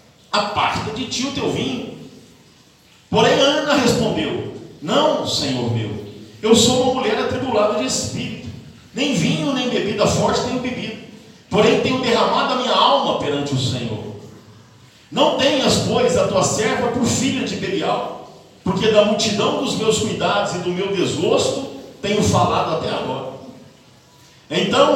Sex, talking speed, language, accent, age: male, 145 wpm, Portuguese, Brazilian, 50-69